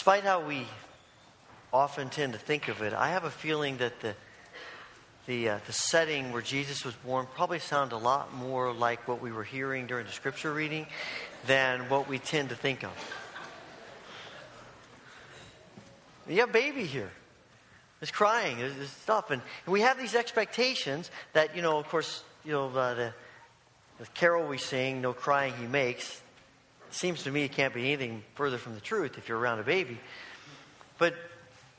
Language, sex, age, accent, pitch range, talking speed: English, male, 40-59, American, 130-190 Hz, 180 wpm